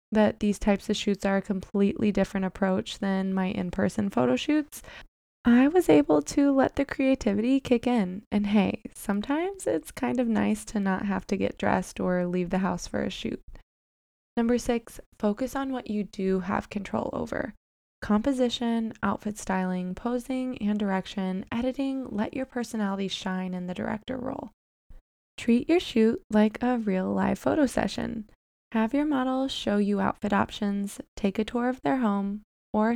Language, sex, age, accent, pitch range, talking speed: English, female, 20-39, American, 195-245 Hz, 170 wpm